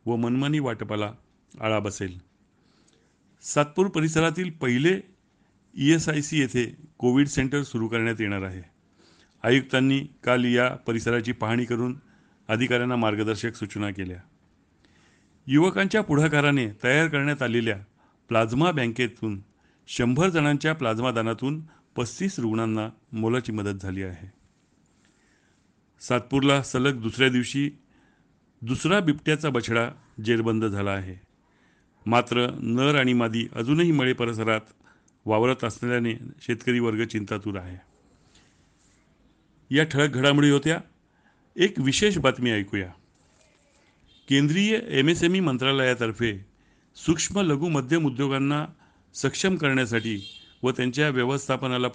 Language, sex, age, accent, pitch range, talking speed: Marathi, male, 40-59, native, 110-140 Hz, 90 wpm